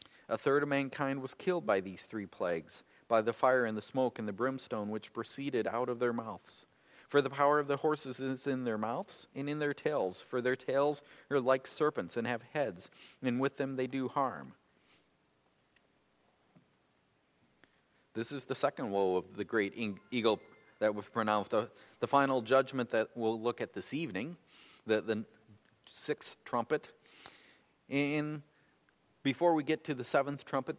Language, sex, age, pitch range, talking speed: English, male, 40-59, 110-140 Hz, 170 wpm